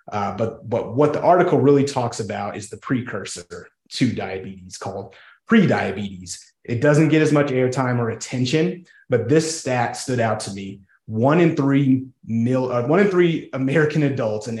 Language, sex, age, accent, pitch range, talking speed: English, male, 30-49, American, 110-140 Hz, 175 wpm